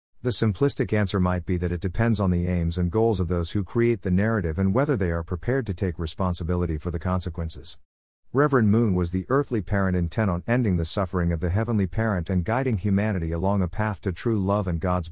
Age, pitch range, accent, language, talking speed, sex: 50-69, 90-115 Hz, American, English, 220 wpm, male